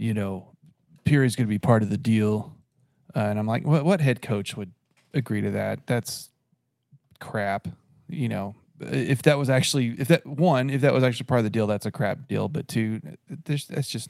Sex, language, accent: male, English, American